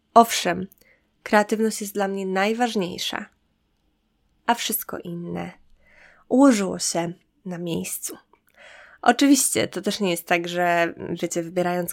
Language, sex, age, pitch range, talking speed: Polish, female, 20-39, 170-215 Hz, 110 wpm